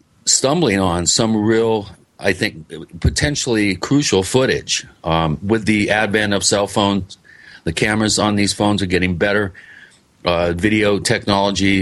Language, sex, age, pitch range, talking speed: English, male, 40-59, 90-115 Hz, 135 wpm